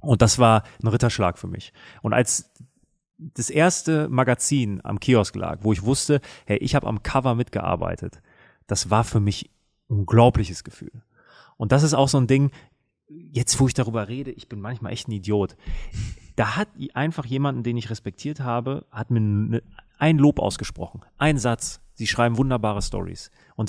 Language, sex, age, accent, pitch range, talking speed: German, male, 30-49, German, 105-135 Hz, 175 wpm